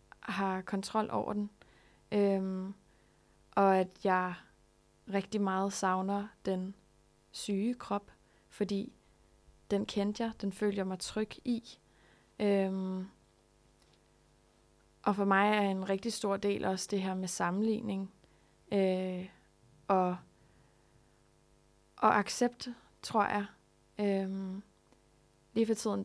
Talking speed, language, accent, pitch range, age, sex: 110 wpm, Danish, native, 190-215 Hz, 20-39, female